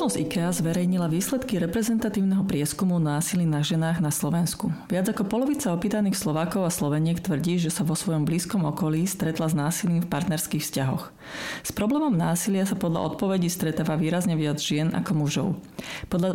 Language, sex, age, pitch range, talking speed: Slovak, female, 30-49, 160-195 Hz, 160 wpm